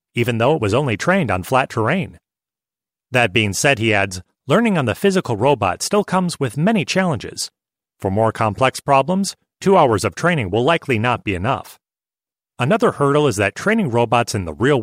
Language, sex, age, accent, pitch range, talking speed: English, male, 30-49, American, 110-170 Hz, 185 wpm